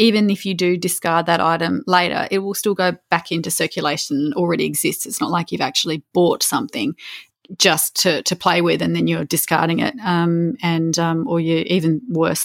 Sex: female